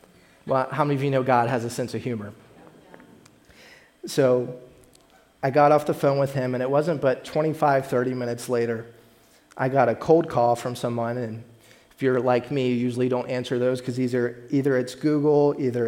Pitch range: 120-135 Hz